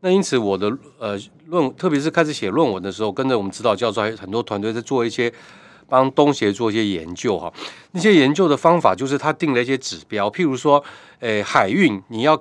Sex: male